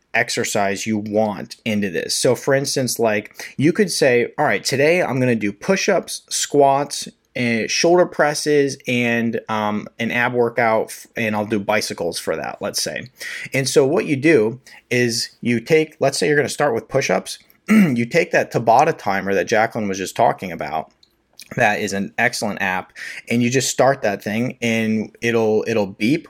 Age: 30-49